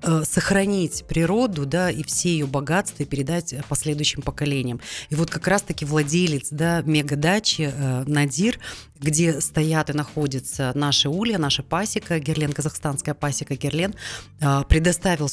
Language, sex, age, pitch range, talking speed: Russian, female, 30-49, 140-170 Hz, 130 wpm